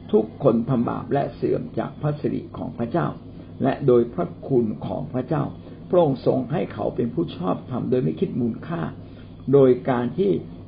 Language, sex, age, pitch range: Thai, male, 60-79, 95-150 Hz